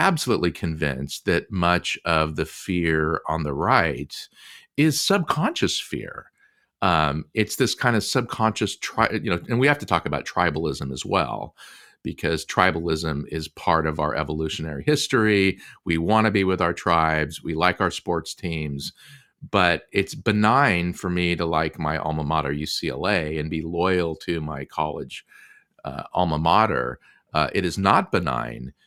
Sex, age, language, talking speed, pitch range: male, 40-59, English, 155 wpm, 80-120 Hz